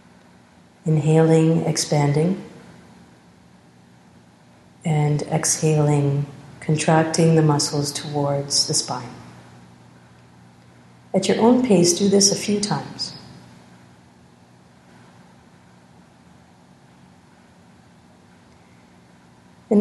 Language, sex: English, female